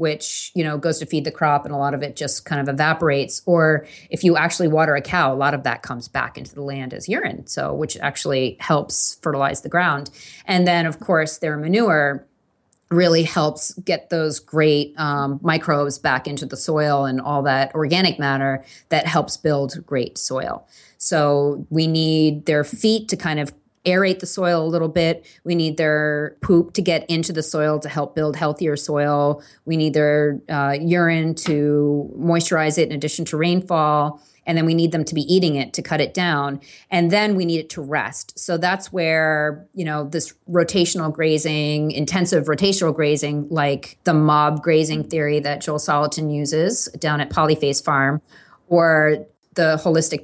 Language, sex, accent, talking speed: English, female, American, 185 wpm